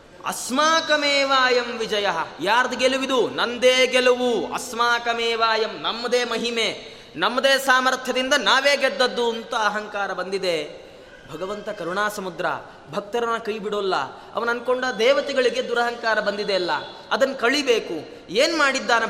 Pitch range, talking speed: 225-260 Hz, 100 wpm